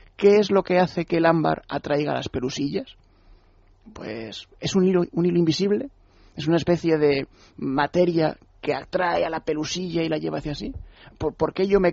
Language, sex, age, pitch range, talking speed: Spanish, male, 30-49, 140-175 Hz, 190 wpm